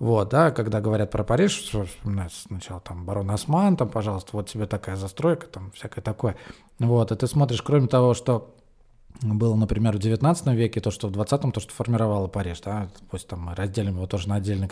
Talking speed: 205 wpm